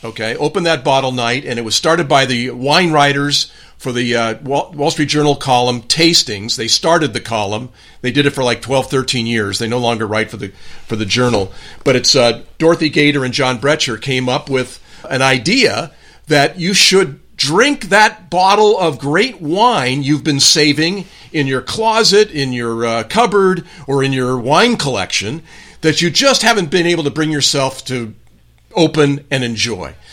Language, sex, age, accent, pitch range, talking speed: English, male, 50-69, American, 125-160 Hz, 185 wpm